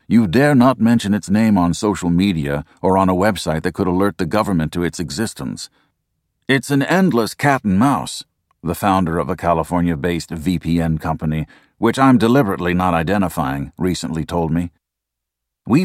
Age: 50-69